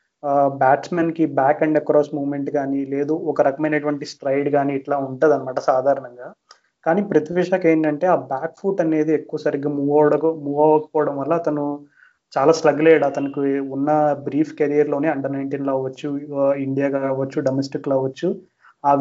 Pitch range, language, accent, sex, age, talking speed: 140-155 Hz, Telugu, native, male, 30-49, 145 wpm